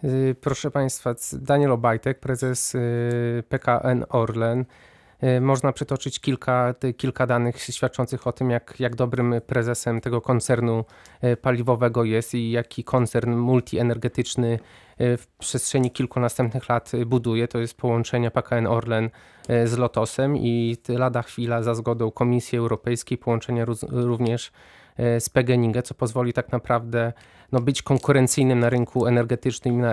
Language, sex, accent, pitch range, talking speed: Polish, male, native, 120-130 Hz, 125 wpm